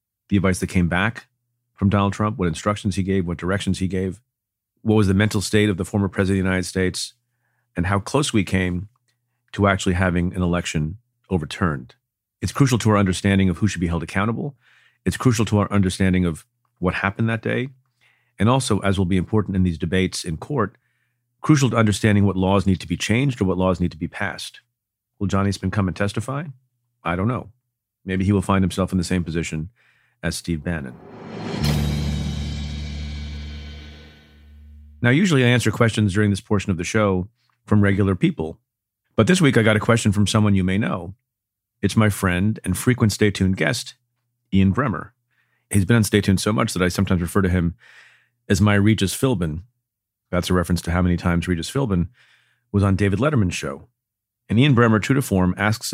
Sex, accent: male, American